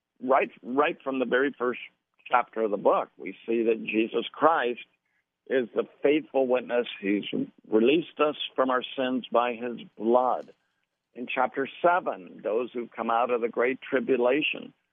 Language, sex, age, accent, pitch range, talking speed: English, male, 60-79, American, 110-145 Hz, 155 wpm